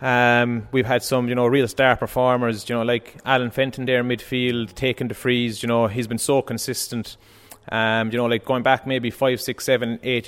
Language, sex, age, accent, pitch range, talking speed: English, male, 20-39, Irish, 110-125 Hz, 215 wpm